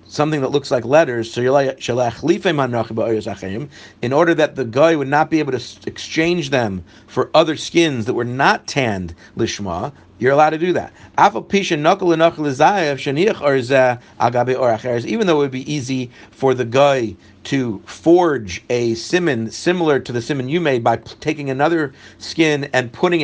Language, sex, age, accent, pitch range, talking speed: English, male, 50-69, American, 125-165 Hz, 150 wpm